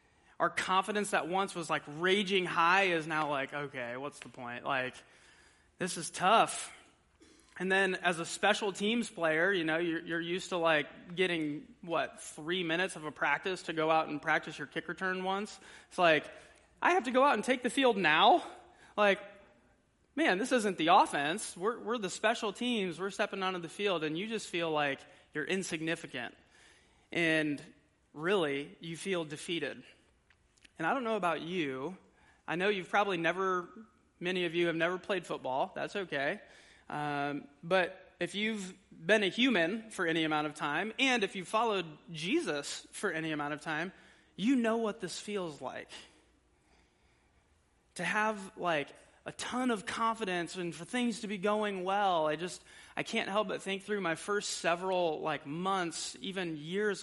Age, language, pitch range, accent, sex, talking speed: 20-39, English, 160-210 Hz, American, male, 175 wpm